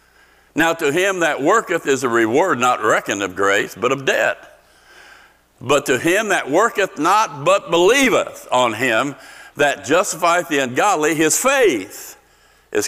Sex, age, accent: male, 60-79, American